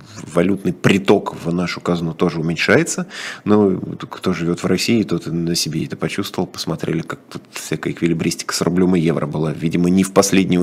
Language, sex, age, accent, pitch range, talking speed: Russian, male, 20-39, native, 95-145 Hz, 175 wpm